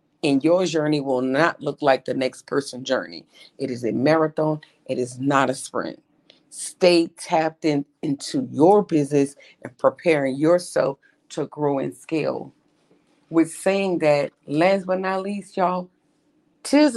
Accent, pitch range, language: American, 140-165 Hz, English